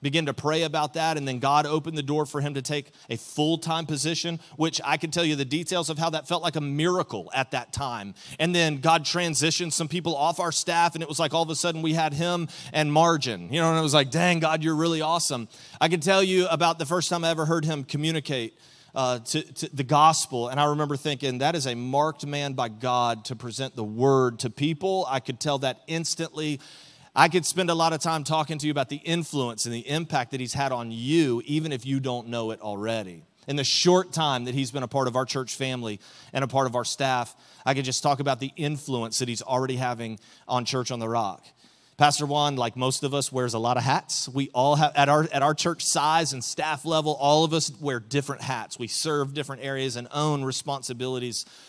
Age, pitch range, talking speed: 30-49, 130-160 Hz, 240 wpm